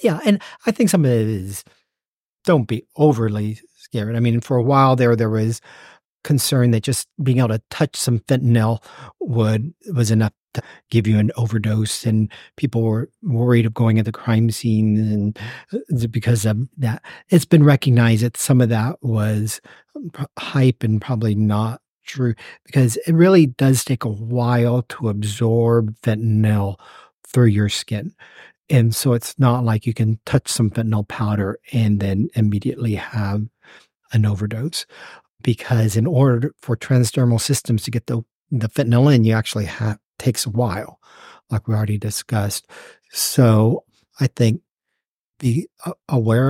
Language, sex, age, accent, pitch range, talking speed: English, male, 50-69, American, 110-135 Hz, 155 wpm